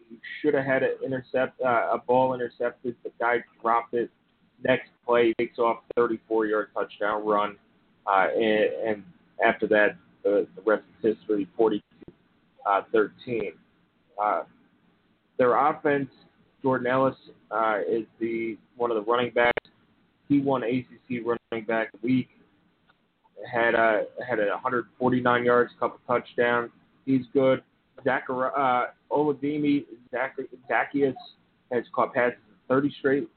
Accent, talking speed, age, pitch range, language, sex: American, 130 wpm, 30-49, 115-135 Hz, English, male